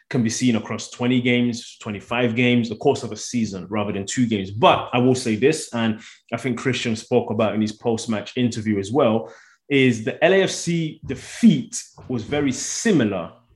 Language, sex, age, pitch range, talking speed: English, male, 20-39, 110-135 Hz, 180 wpm